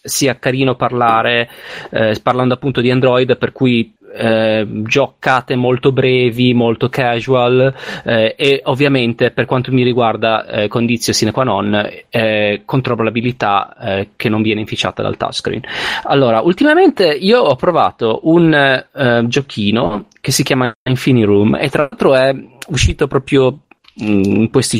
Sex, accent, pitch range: male, native, 110-140 Hz